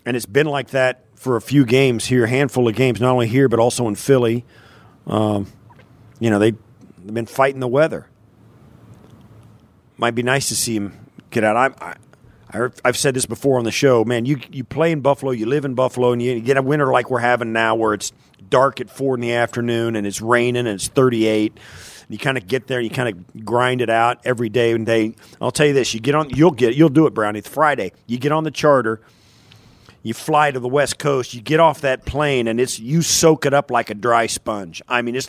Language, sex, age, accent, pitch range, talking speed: English, male, 40-59, American, 115-150 Hz, 240 wpm